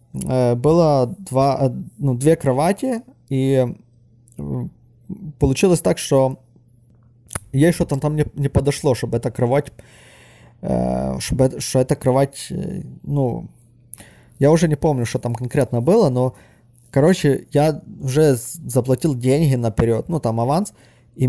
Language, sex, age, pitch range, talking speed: Russian, male, 20-39, 120-150 Hz, 115 wpm